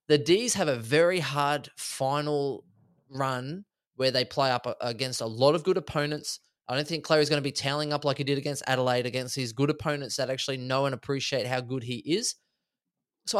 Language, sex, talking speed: English, male, 205 wpm